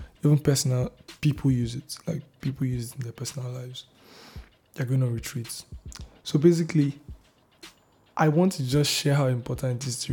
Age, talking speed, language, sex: 20-39, 170 wpm, English, male